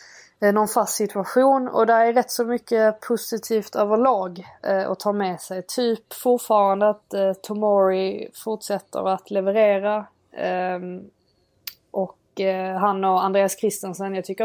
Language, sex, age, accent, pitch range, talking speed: Swedish, female, 20-39, native, 185-215 Hz, 140 wpm